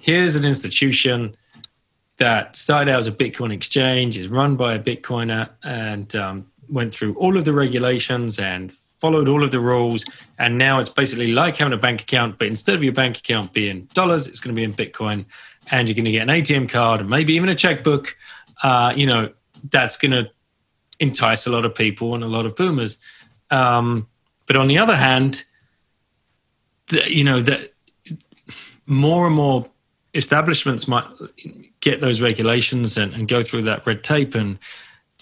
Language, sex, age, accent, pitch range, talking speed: English, male, 30-49, British, 115-140 Hz, 180 wpm